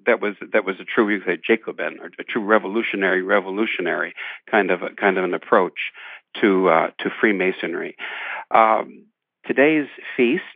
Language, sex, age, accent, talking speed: English, male, 60-79, American, 120 wpm